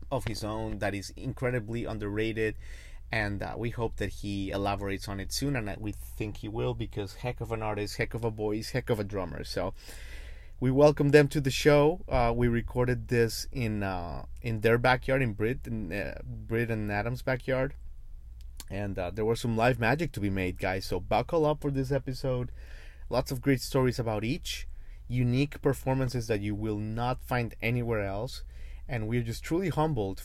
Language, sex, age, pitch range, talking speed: English, male, 30-49, 100-125 Hz, 190 wpm